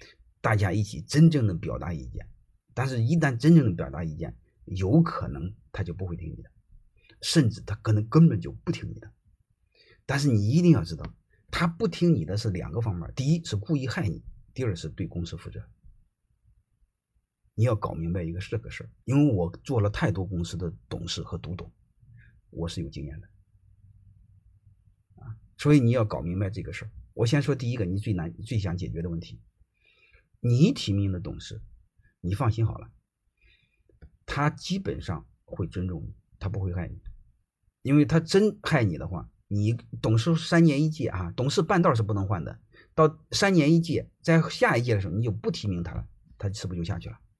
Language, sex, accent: Chinese, male, native